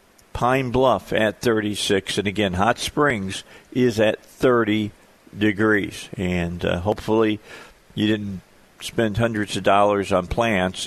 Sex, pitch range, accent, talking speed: male, 100-125 Hz, American, 125 wpm